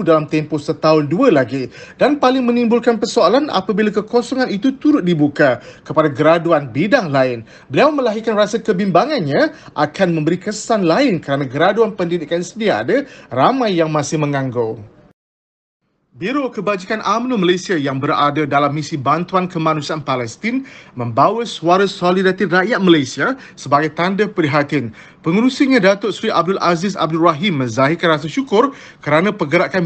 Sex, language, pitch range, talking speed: male, Malay, 155-225 Hz, 135 wpm